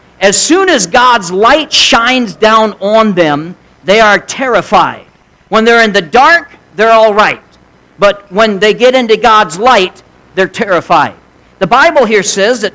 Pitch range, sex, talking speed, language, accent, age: 175-225 Hz, male, 160 wpm, English, American, 50-69